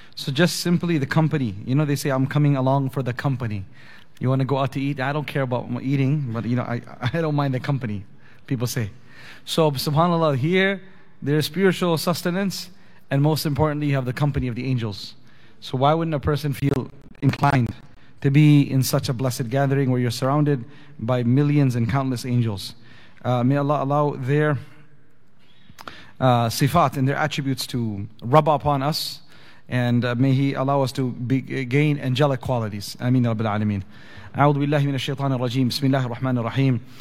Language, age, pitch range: English, 30-49, 125-150 Hz